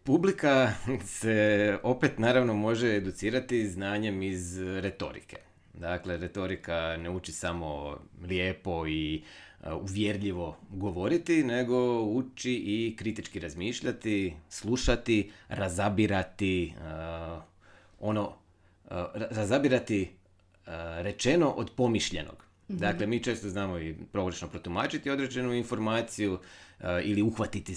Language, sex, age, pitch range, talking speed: Croatian, male, 30-49, 90-110 Hz, 95 wpm